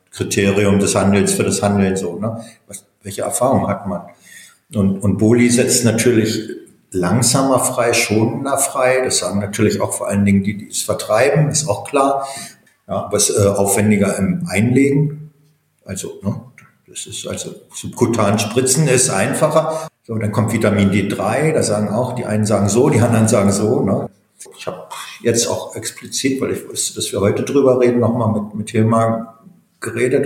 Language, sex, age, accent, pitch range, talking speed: German, male, 50-69, German, 105-130 Hz, 170 wpm